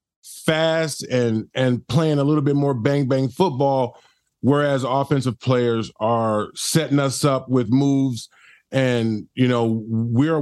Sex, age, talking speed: male, 30-49, 140 wpm